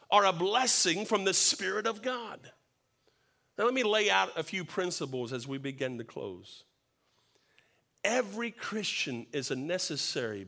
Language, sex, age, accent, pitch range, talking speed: English, male, 50-69, American, 140-230 Hz, 150 wpm